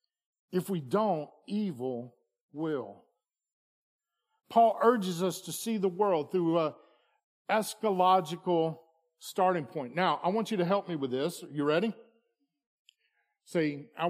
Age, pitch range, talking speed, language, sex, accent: 50-69, 185-275 Hz, 130 wpm, English, male, American